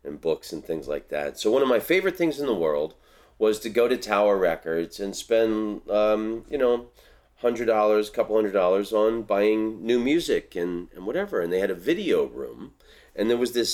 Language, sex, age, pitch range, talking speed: English, male, 40-59, 85-140 Hz, 220 wpm